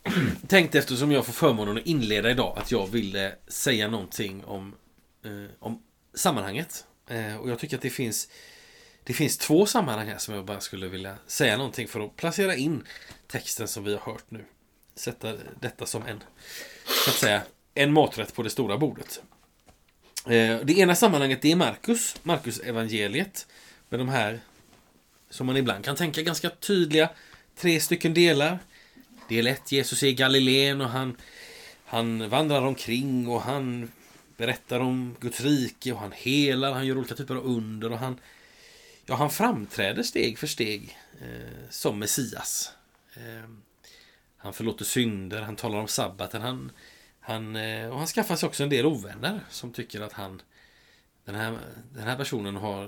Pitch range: 105-140 Hz